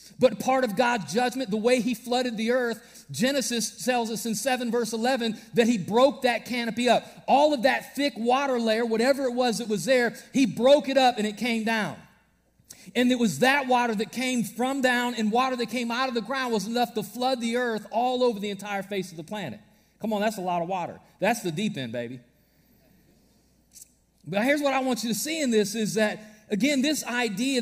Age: 40-59